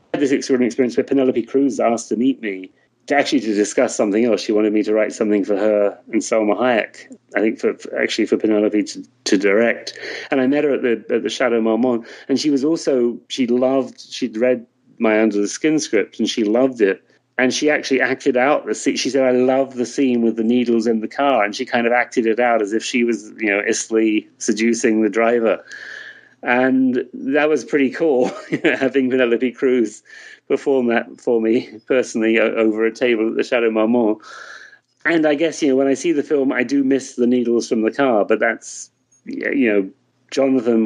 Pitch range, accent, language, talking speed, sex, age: 110-130 Hz, British, English, 215 wpm, male, 40-59